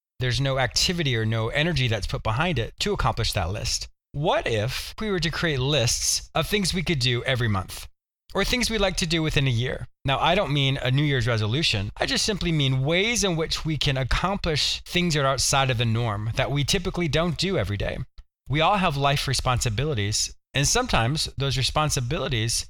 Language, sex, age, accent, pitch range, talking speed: English, male, 20-39, American, 125-175 Hz, 205 wpm